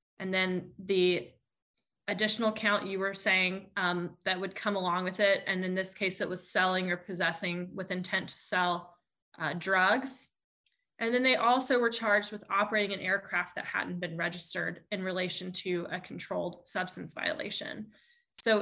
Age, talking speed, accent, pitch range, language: 20-39, 170 wpm, American, 180-215 Hz, English